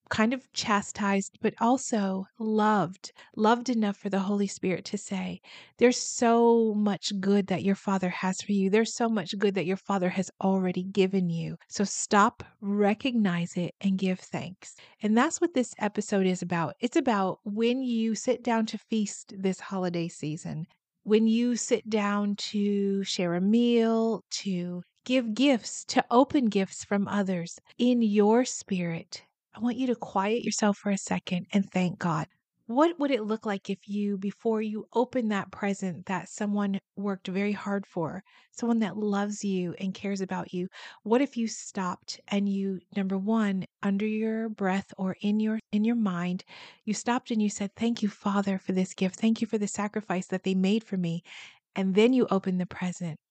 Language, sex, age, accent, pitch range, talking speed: English, female, 40-59, American, 190-225 Hz, 180 wpm